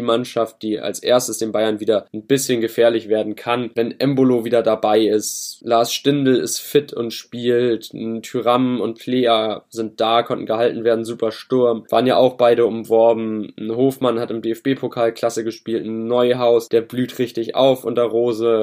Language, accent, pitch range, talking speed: German, German, 115-140 Hz, 175 wpm